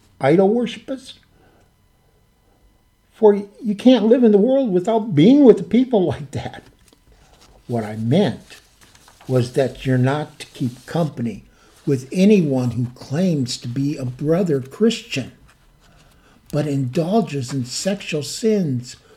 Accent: American